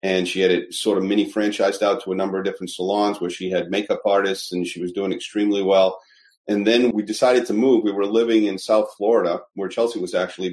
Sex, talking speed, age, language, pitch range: male, 240 wpm, 40-59, English, 95-115 Hz